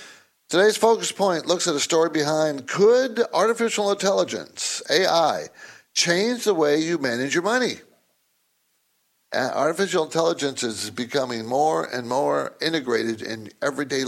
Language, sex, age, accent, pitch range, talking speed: English, male, 60-79, American, 125-175 Hz, 125 wpm